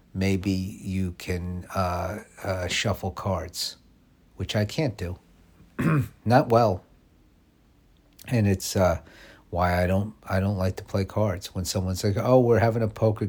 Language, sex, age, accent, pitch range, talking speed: English, male, 50-69, American, 85-110 Hz, 150 wpm